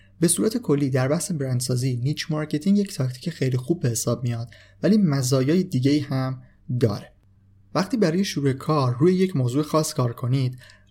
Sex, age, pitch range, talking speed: male, 30-49, 120-155 Hz, 165 wpm